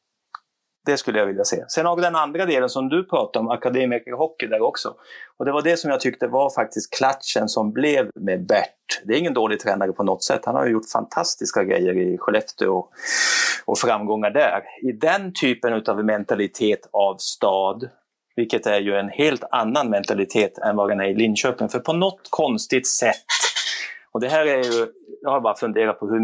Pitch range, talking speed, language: 115-165 Hz, 200 wpm, Swedish